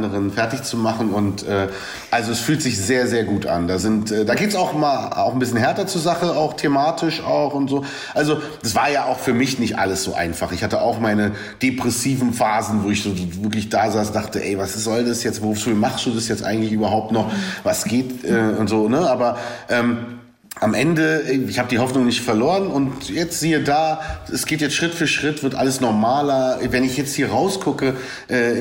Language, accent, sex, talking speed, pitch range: German, German, male, 220 wpm, 115-150 Hz